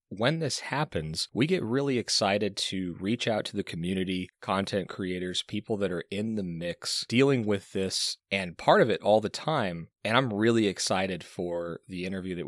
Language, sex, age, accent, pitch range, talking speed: English, male, 30-49, American, 90-115 Hz, 190 wpm